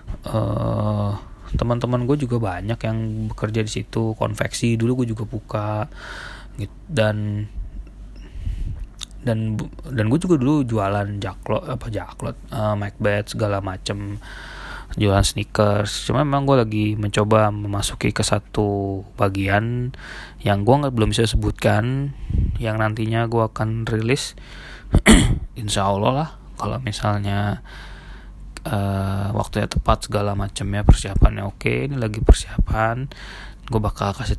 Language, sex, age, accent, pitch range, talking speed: Indonesian, male, 20-39, native, 105-115 Hz, 120 wpm